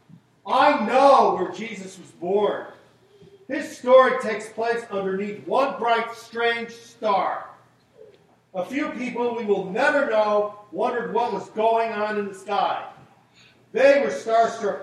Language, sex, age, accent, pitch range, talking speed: English, male, 50-69, American, 205-265 Hz, 135 wpm